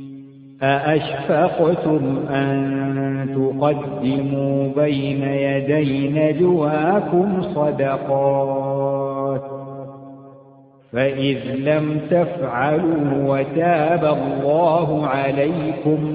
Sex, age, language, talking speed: male, 50-69, Arabic, 50 wpm